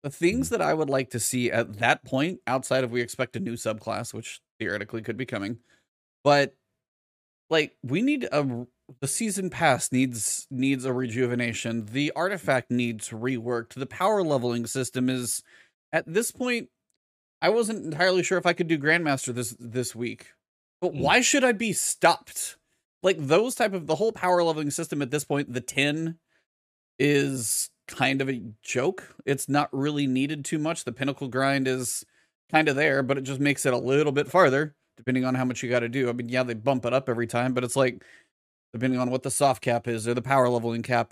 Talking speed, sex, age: 200 wpm, male, 30-49